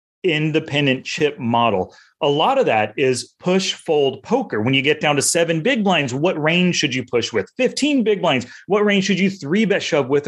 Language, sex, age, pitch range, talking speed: English, male, 30-49, 125-175 Hz, 200 wpm